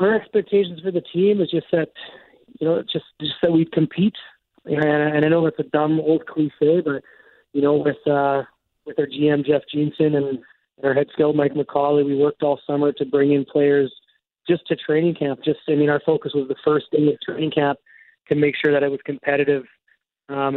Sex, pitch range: male, 140-155 Hz